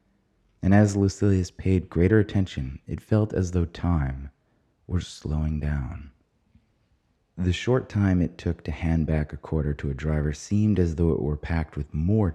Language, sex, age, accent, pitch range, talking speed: English, male, 30-49, American, 75-95 Hz, 170 wpm